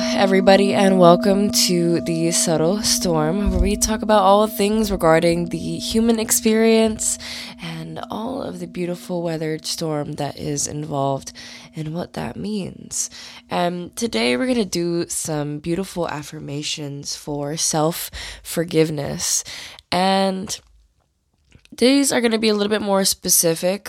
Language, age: English, 20-39